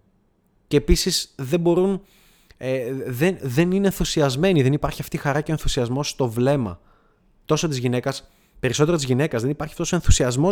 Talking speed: 170 wpm